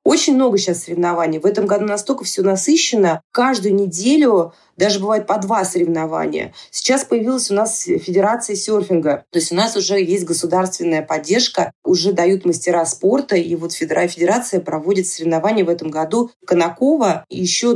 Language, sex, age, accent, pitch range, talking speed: Russian, female, 30-49, native, 170-215 Hz, 150 wpm